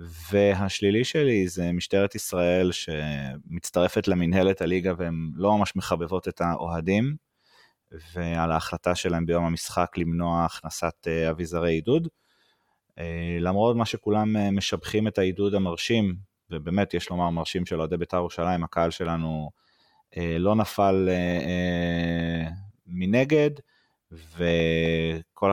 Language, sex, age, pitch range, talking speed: Hebrew, male, 30-49, 85-105 Hz, 105 wpm